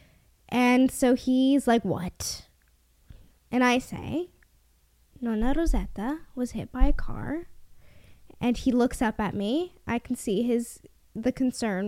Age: 10-29